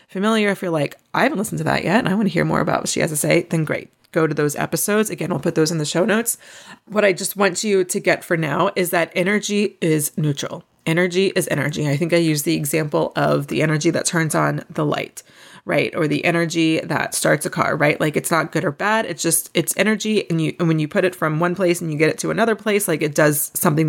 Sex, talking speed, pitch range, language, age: female, 270 wpm, 160-210 Hz, English, 30-49